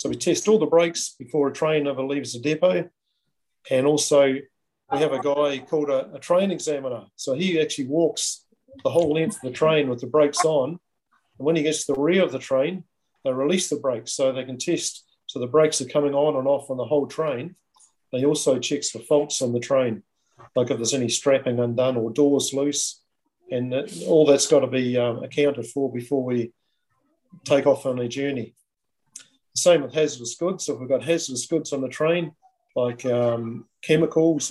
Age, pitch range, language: 40-59, 125-155 Hz, English